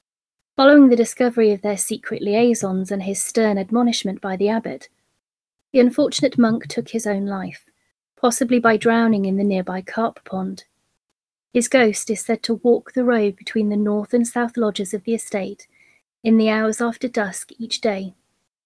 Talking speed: 170 wpm